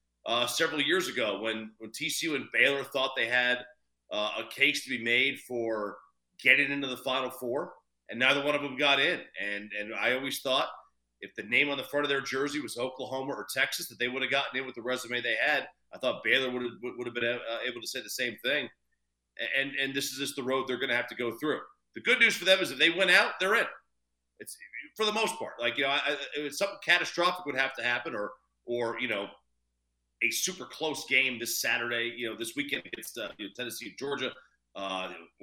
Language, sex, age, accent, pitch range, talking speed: English, male, 40-59, American, 115-145 Hz, 230 wpm